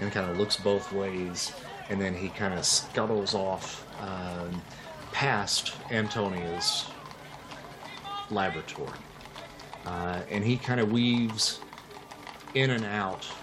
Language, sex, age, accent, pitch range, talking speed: English, male, 30-49, American, 90-110 Hz, 115 wpm